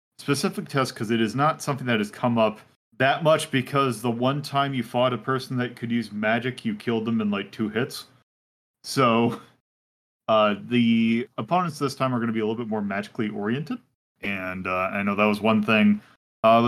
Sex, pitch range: male, 105-130 Hz